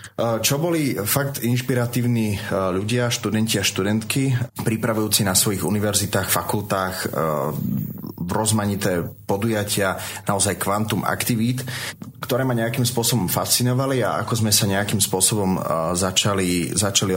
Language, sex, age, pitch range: Slovak, male, 30-49, 95-110 Hz